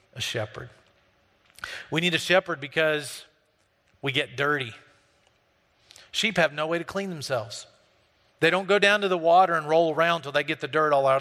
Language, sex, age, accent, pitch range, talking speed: English, male, 40-59, American, 135-190 Hz, 180 wpm